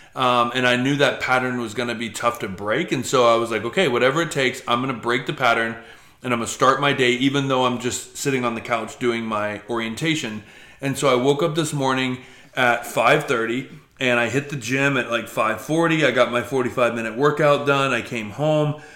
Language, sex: English, male